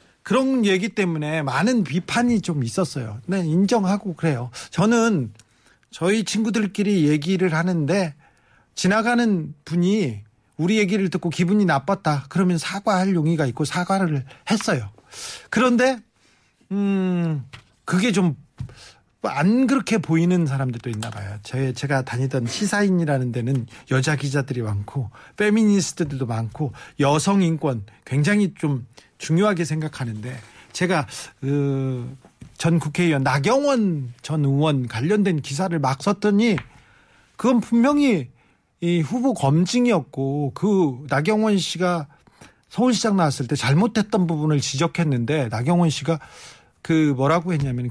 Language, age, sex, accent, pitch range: Korean, 40-59, male, native, 135-195 Hz